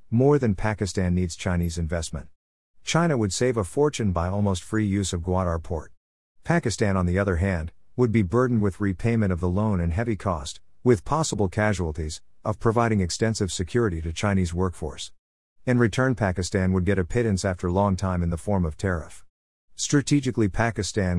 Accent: American